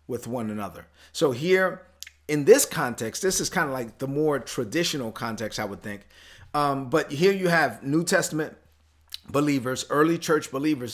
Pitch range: 120-160 Hz